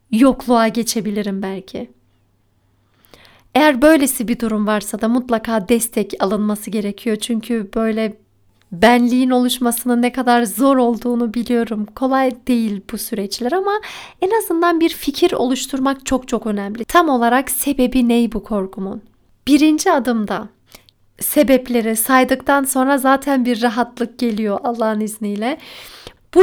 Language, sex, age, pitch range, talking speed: Turkish, female, 40-59, 225-275 Hz, 120 wpm